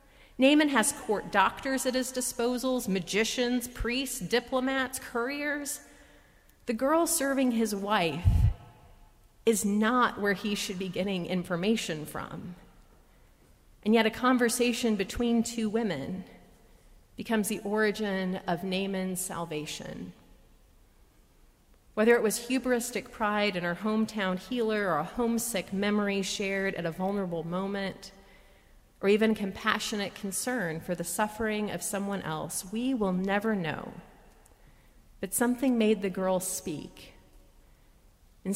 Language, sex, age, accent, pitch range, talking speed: English, female, 40-59, American, 190-240 Hz, 120 wpm